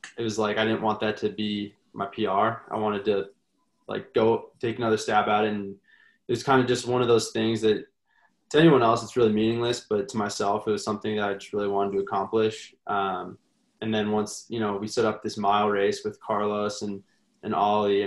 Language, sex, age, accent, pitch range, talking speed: English, male, 20-39, American, 105-115 Hz, 225 wpm